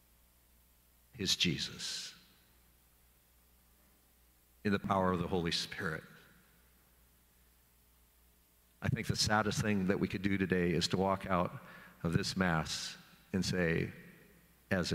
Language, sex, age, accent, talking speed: English, male, 50-69, American, 115 wpm